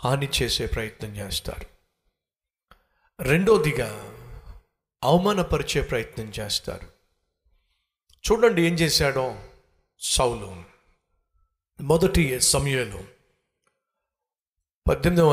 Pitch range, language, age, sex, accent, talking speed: 110-175 Hz, Telugu, 50-69, male, native, 60 wpm